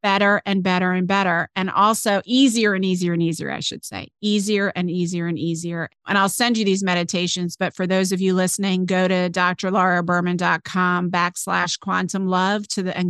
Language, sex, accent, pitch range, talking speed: English, female, American, 180-205 Hz, 190 wpm